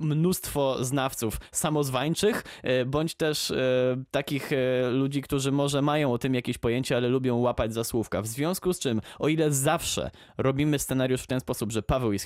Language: Polish